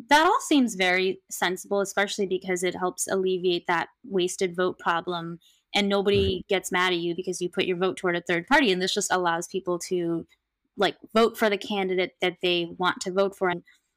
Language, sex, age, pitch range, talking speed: English, female, 20-39, 175-200 Hz, 200 wpm